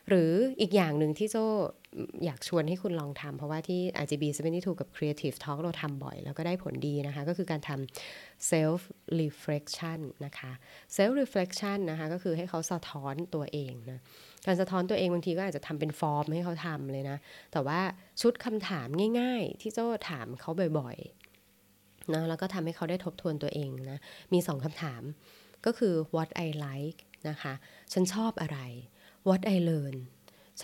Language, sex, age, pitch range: Thai, female, 20-39, 140-185 Hz